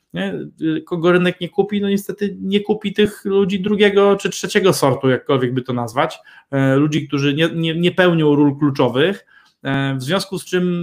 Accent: native